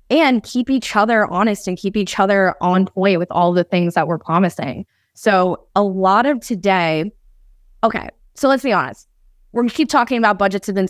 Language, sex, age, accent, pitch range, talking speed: English, female, 20-39, American, 185-225 Hz, 205 wpm